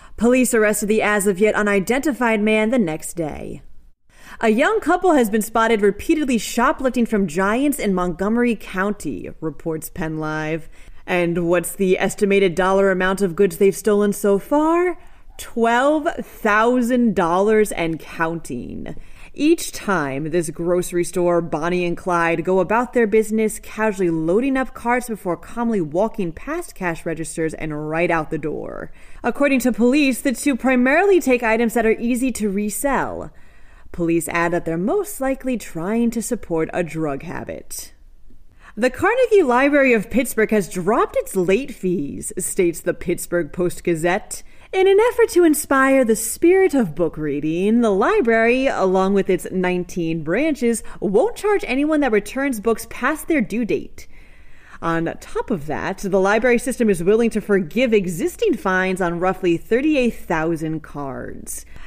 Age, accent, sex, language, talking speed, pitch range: 30-49, American, female, English, 145 wpm, 175-250 Hz